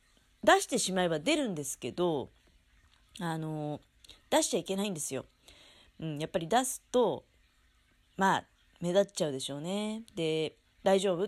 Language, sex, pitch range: Japanese, female, 150-215 Hz